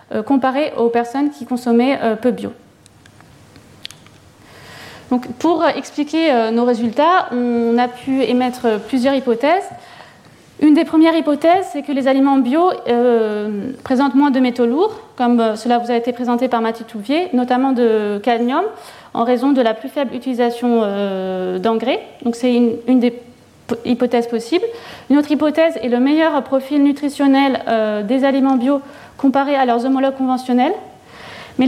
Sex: female